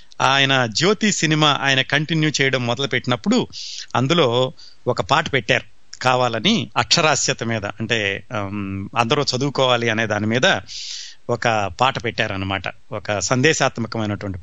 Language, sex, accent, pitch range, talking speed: Telugu, male, native, 120-150 Hz, 110 wpm